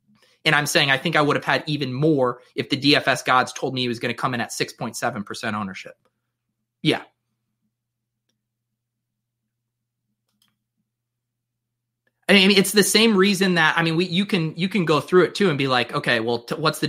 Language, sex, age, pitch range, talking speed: English, male, 30-49, 120-180 Hz, 190 wpm